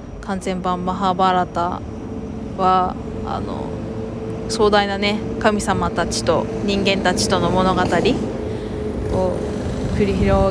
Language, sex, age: Japanese, female, 20-39